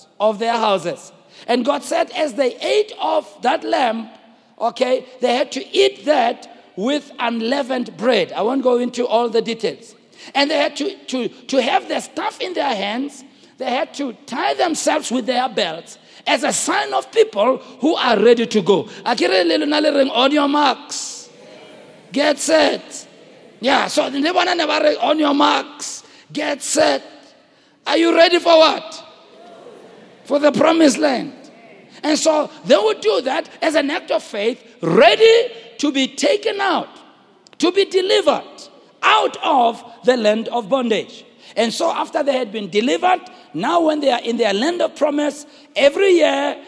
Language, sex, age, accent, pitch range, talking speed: English, male, 50-69, South African, 240-315 Hz, 155 wpm